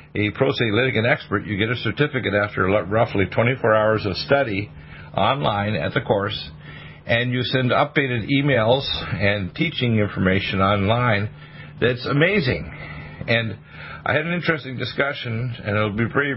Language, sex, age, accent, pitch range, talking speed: English, male, 50-69, American, 105-130 Hz, 145 wpm